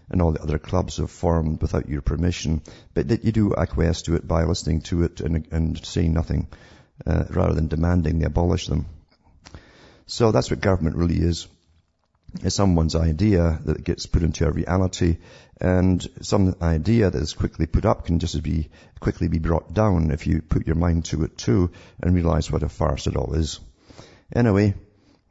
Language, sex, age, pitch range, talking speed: English, male, 50-69, 80-95 Hz, 185 wpm